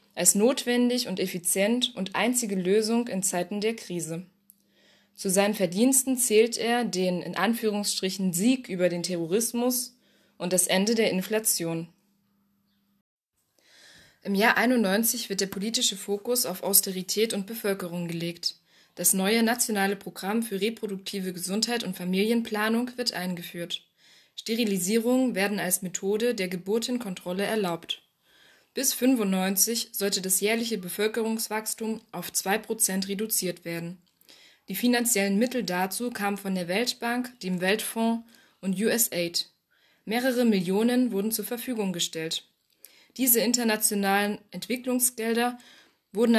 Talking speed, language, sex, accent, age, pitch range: 115 wpm, German, female, German, 20-39, 190-230 Hz